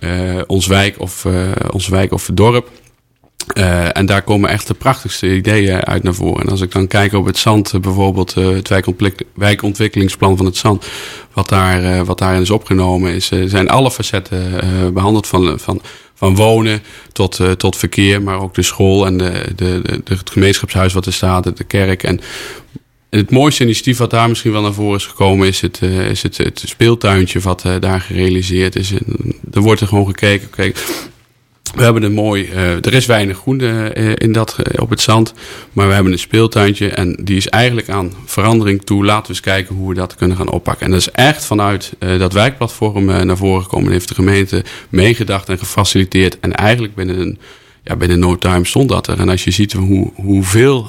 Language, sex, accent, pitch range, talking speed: Dutch, male, Dutch, 95-110 Hz, 210 wpm